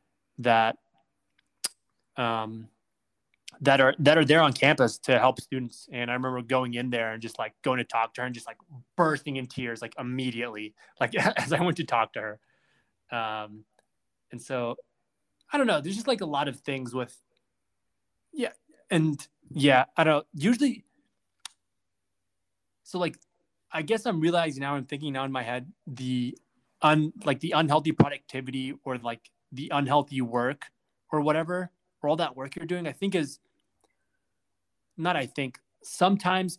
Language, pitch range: English, 120-155 Hz